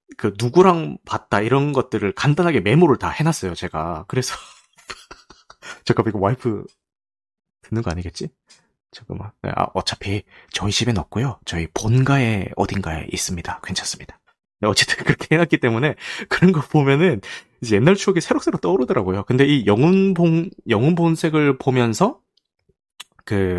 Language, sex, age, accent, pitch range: Korean, male, 30-49, native, 100-145 Hz